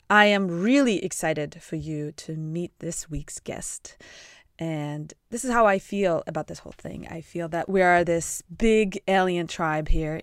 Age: 20-39